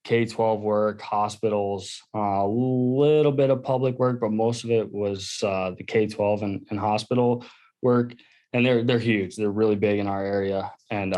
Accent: American